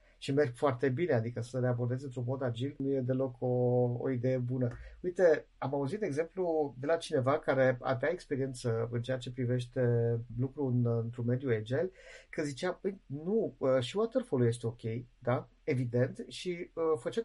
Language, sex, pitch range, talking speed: Romanian, male, 125-160 Hz, 175 wpm